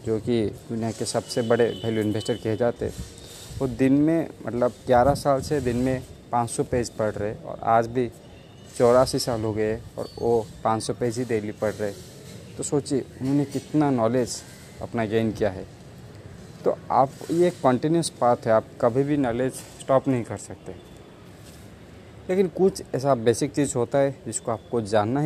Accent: native